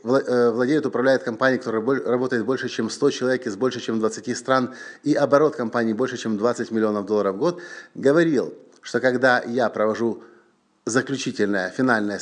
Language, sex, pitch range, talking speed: English, male, 120-150 Hz, 150 wpm